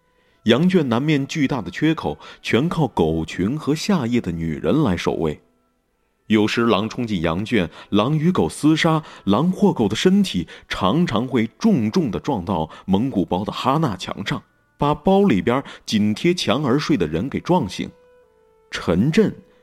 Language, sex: Chinese, male